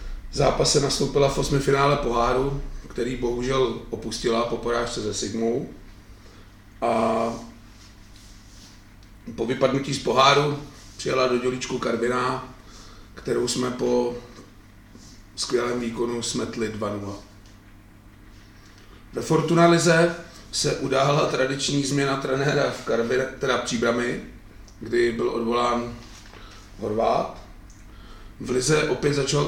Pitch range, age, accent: 105-125 Hz, 40-59, native